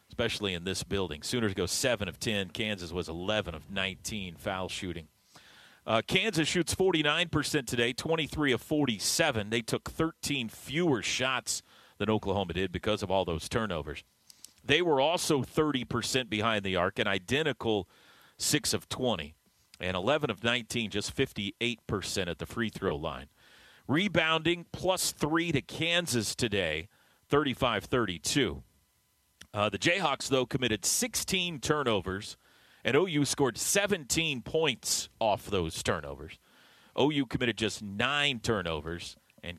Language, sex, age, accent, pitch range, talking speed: English, male, 40-59, American, 100-140 Hz, 135 wpm